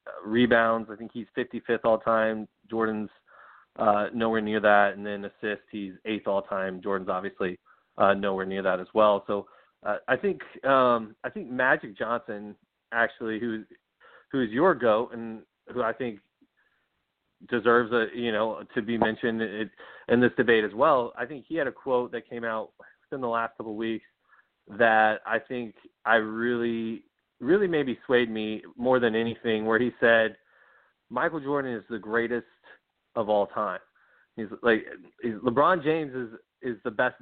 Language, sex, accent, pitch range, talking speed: English, male, American, 110-120 Hz, 170 wpm